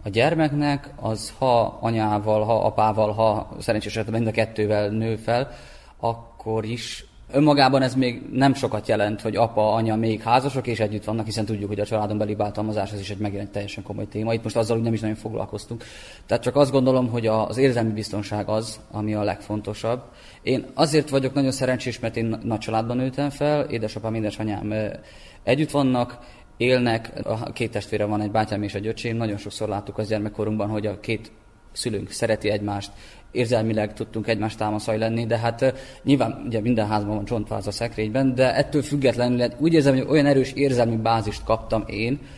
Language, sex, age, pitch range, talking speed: Hungarian, male, 20-39, 105-125 Hz, 175 wpm